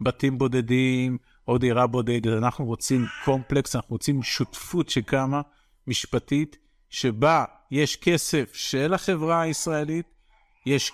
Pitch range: 120-150 Hz